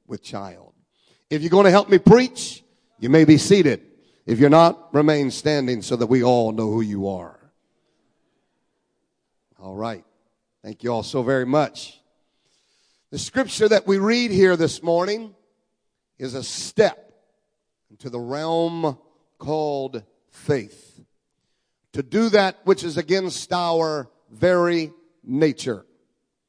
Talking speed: 135 wpm